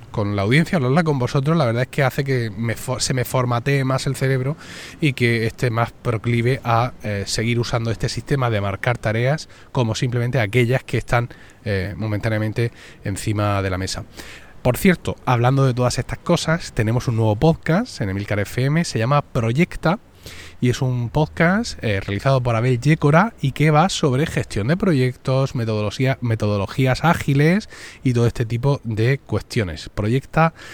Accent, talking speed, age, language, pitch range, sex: Spanish, 170 wpm, 30-49, Spanish, 115-145 Hz, male